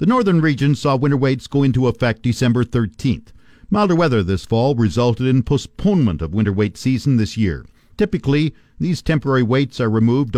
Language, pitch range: English, 115-150 Hz